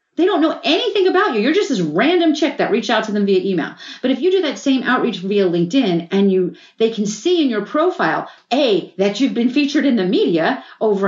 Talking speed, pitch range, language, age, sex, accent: 240 wpm, 210-310 Hz, English, 40-59, female, American